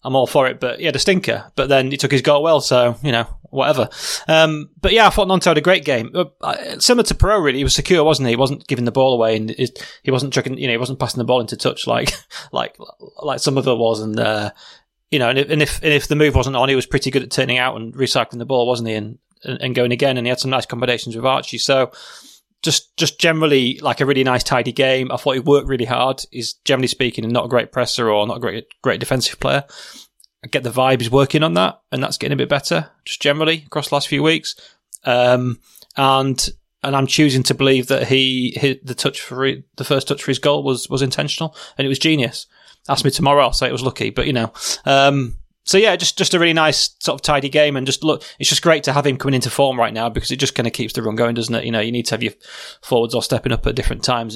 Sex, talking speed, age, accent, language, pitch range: male, 265 wpm, 20-39, British, English, 120-145 Hz